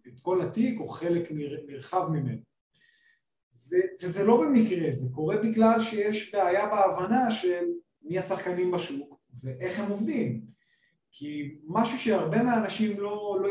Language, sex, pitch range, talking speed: Hebrew, male, 155-220 Hz, 130 wpm